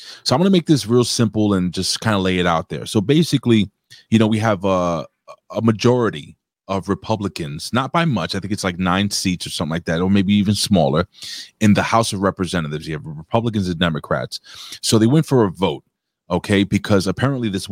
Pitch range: 90-115 Hz